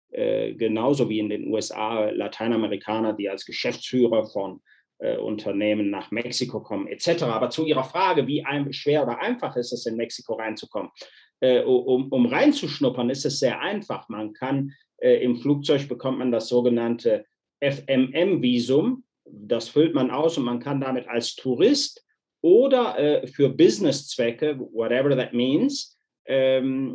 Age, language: 30-49, German